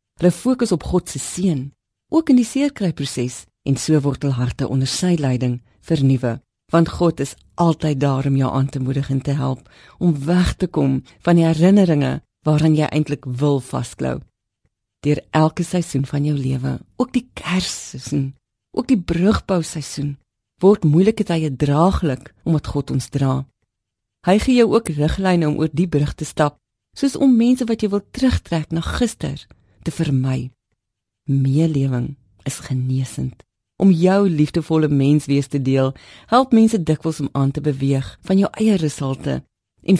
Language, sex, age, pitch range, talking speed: Dutch, female, 40-59, 135-175 Hz, 165 wpm